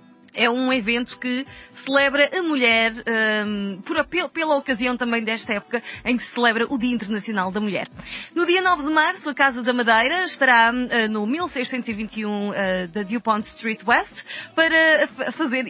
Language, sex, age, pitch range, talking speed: Portuguese, female, 20-39, 225-285 Hz, 155 wpm